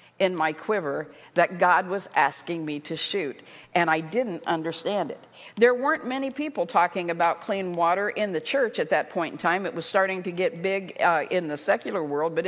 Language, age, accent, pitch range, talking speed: English, 50-69, American, 175-225 Hz, 205 wpm